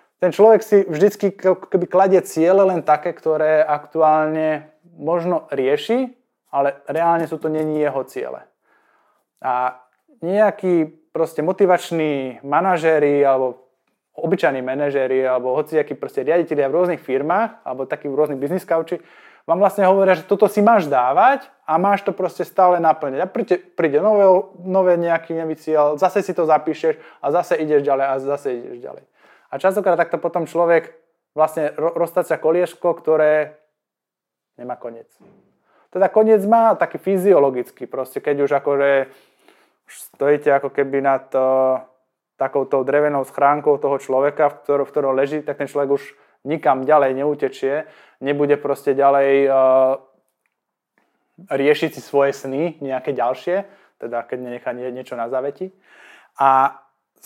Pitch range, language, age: 140-180 Hz, Slovak, 20-39